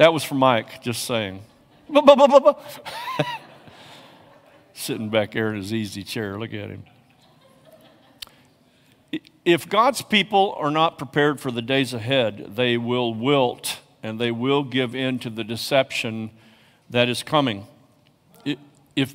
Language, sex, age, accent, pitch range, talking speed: English, male, 50-69, American, 125-165 Hz, 130 wpm